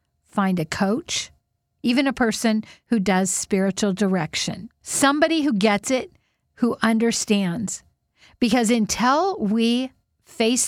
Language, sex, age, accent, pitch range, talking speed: English, female, 50-69, American, 200-250 Hz, 110 wpm